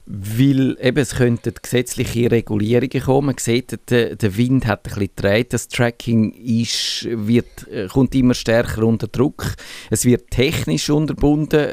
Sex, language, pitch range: male, German, 105-120 Hz